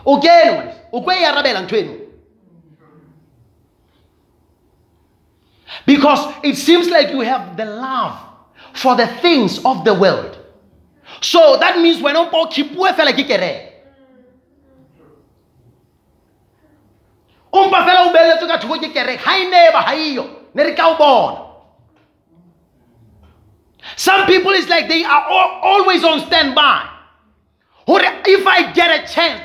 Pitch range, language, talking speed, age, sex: 240-360 Hz, English, 105 wpm, 30-49, male